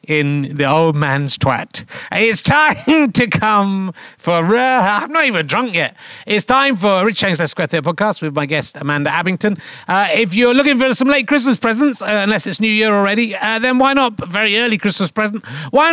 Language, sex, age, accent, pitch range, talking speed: English, male, 40-59, British, 170-235 Hz, 205 wpm